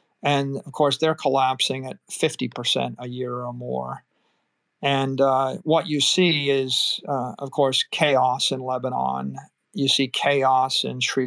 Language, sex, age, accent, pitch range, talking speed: English, male, 50-69, American, 130-150 Hz, 150 wpm